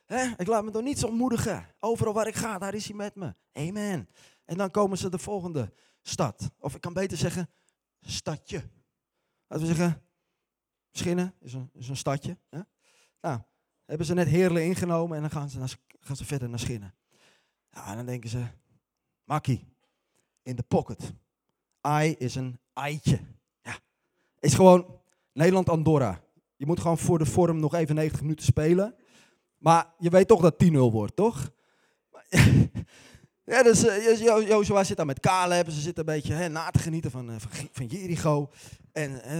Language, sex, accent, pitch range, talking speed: Dutch, male, Dutch, 130-175 Hz, 175 wpm